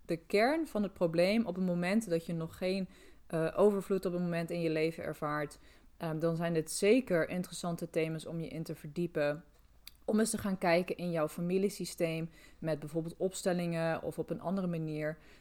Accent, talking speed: Dutch, 190 wpm